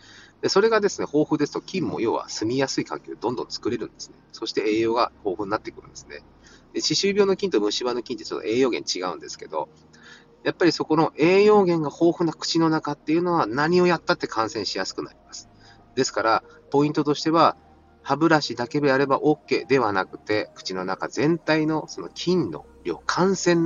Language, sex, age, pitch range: Japanese, male, 30-49, 125-195 Hz